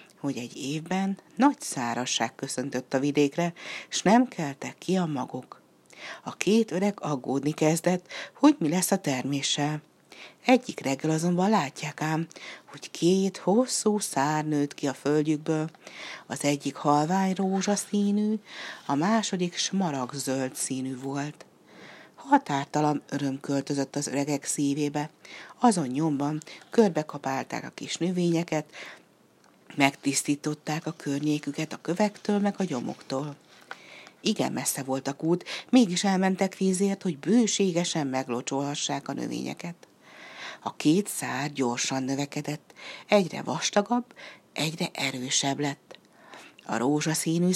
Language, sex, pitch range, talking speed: Hungarian, female, 140-195 Hz, 115 wpm